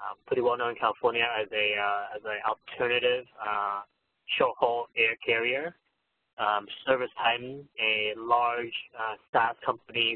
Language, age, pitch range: English, 20-39, 105-160 Hz